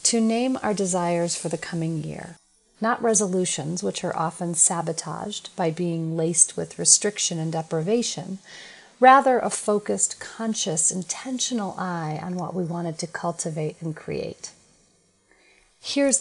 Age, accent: 40-59, American